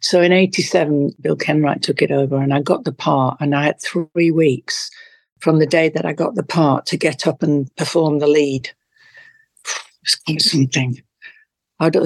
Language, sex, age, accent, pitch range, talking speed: English, female, 60-79, British, 150-185 Hz, 185 wpm